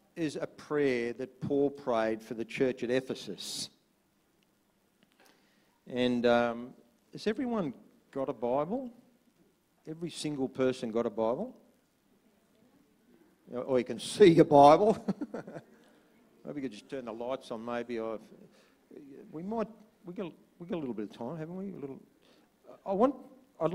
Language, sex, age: English, male, 50-69